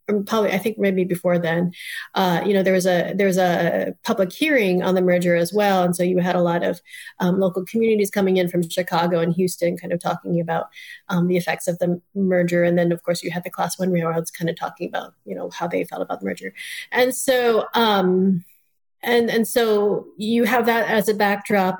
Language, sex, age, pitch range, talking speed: English, female, 30-49, 180-215 Hz, 225 wpm